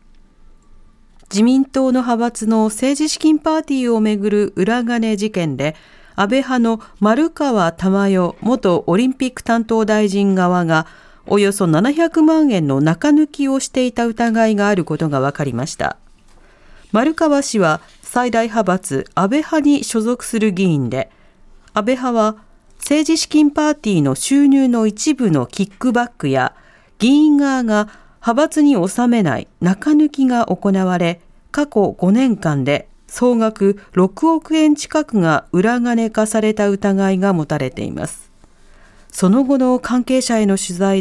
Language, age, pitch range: Japanese, 40-59, 185-265 Hz